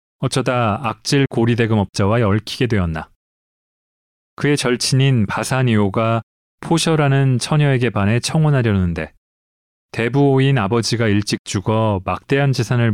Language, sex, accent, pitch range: Korean, male, native, 100-135 Hz